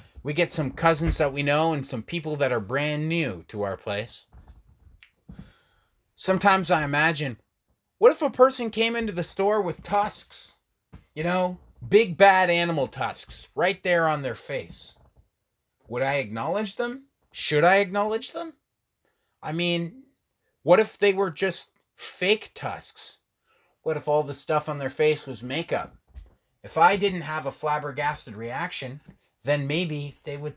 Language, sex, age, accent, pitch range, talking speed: English, male, 30-49, American, 115-180 Hz, 155 wpm